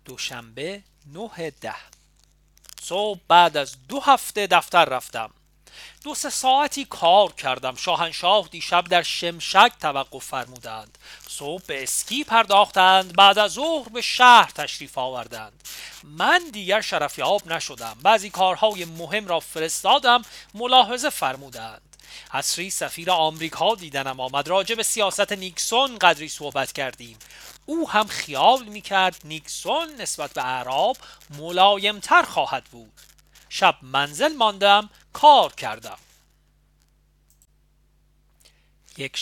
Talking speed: 110 wpm